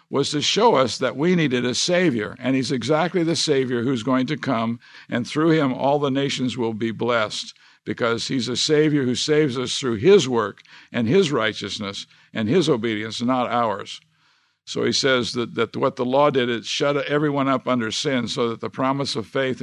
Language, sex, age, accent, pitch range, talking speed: English, male, 50-69, American, 120-145 Hz, 200 wpm